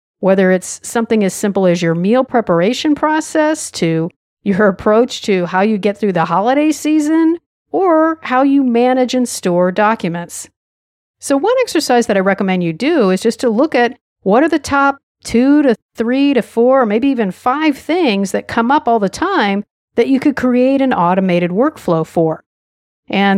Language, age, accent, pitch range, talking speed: English, 50-69, American, 185-275 Hz, 175 wpm